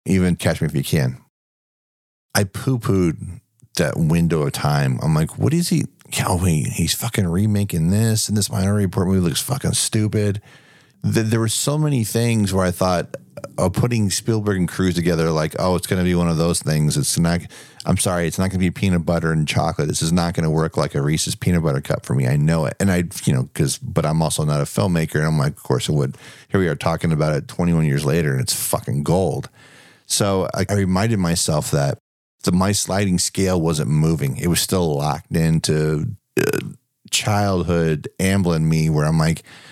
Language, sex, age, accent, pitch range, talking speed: English, male, 40-59, American, 80-110 Hz, 210 wpm